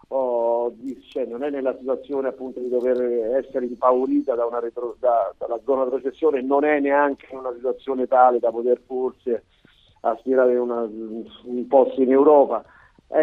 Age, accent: 40-59, native